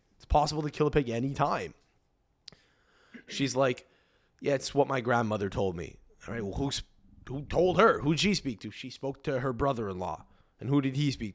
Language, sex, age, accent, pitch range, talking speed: English, male, 20-39, American, 120-160 Hz, 190 wpm